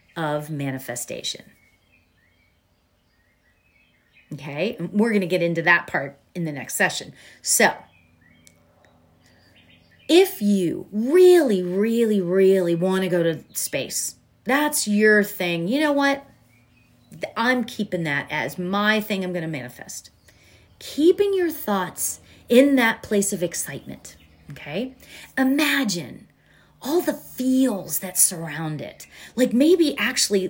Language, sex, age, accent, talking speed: English, female, 30-49, American, 115 wpm